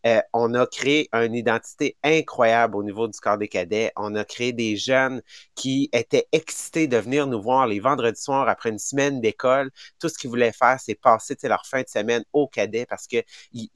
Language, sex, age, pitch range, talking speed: English, male, 30-49, 110-130 Hz, 205 wpm